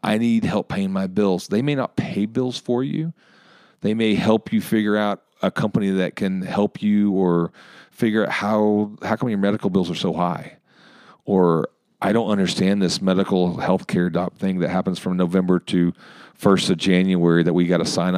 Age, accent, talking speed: 40-59, American, 190 wpm